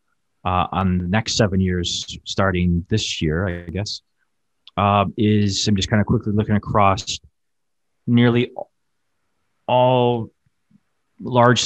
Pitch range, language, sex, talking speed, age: 90-105 Hz, English, male, 120 wpm, 30-49